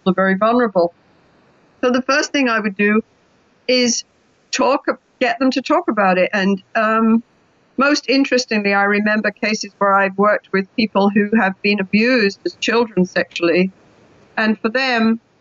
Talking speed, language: 155 wpm, English